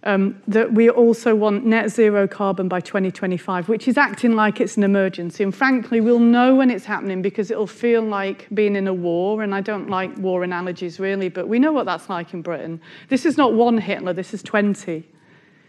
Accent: British